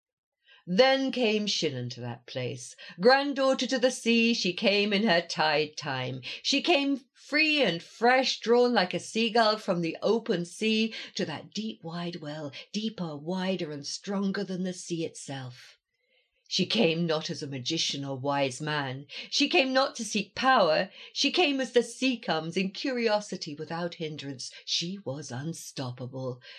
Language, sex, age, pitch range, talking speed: English, female, 50-69, 170-235 Hz, 160 wpm